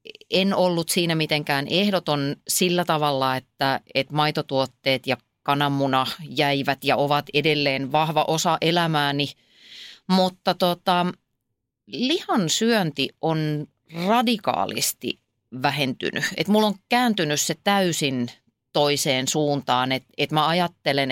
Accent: native